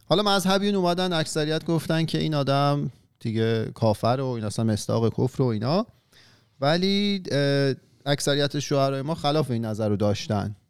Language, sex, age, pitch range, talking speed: Persian, male, 40-59, 110-140 Hz, 145 wpm